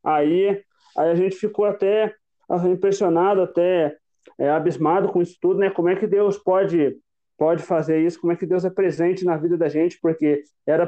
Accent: Brazilian